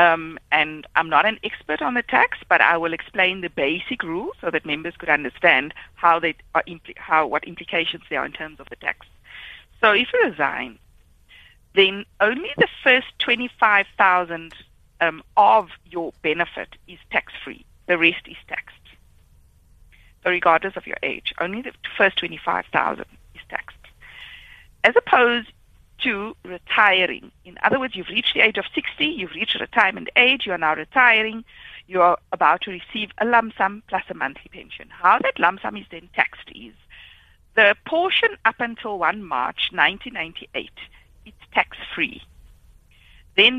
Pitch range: 160-235 Hz